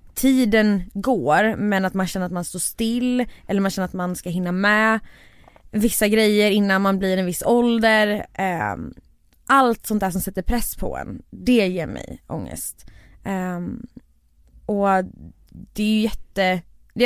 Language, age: Swedish, 20-39